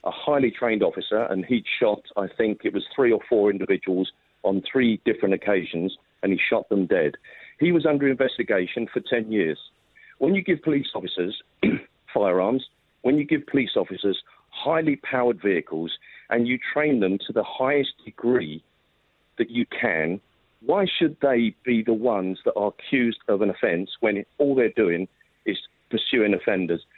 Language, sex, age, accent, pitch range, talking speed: English, male, 50-69, British, 100-135 Hz, 165 wpm